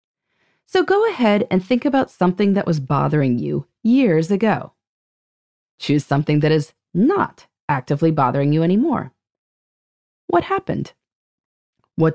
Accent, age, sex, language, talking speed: American, 30-49, female, English, 125 wpm